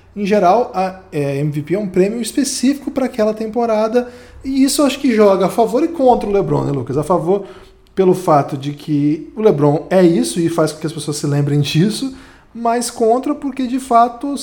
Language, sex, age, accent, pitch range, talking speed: Portuguese, male, 20-39, Brazilian, 150-225 Hz, 200 wpm